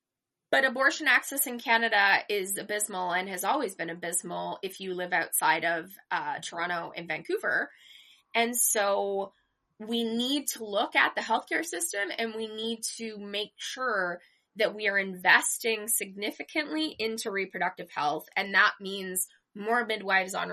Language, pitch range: English, 195-315 Hz